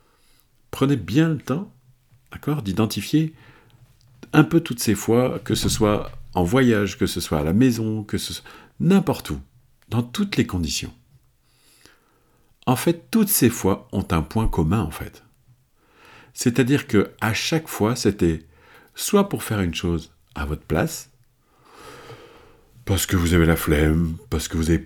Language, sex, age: French, male, 50-69